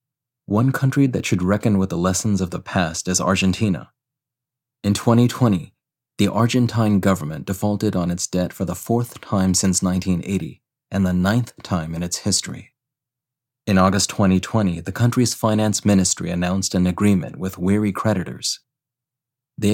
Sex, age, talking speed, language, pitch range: male, 30-49, 150 wpm, English, 95-120 Hz